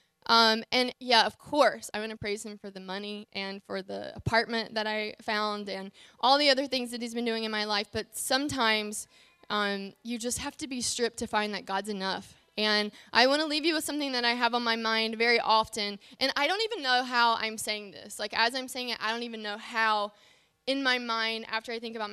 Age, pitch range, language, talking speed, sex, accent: 20-39, 205-240 Hz, English, 240 wpm, female, American